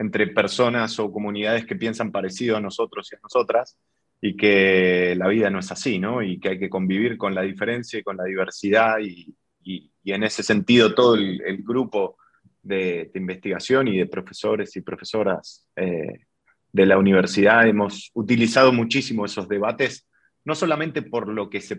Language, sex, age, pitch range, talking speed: Spanish, male, 20-39, 95-115 Hz, 180 wpm